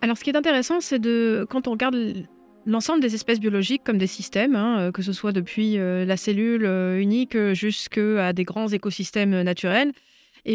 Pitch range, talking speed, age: 195-230 Hz, 195 wpm, 30-49